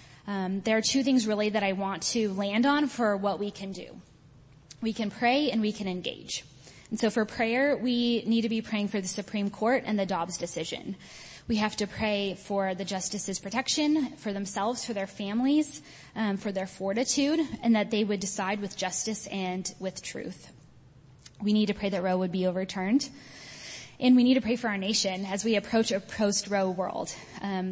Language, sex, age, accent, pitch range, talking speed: English, female, 10-29, American, 190-230 Hz, 200 wpm